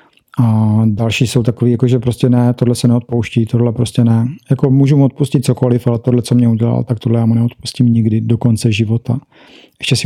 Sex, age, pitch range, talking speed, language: male, 40-59, 120-140 Hz, 205 wpm, Czech